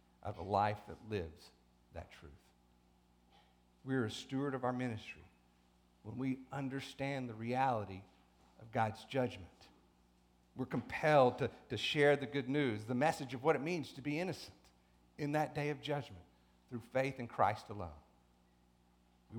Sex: male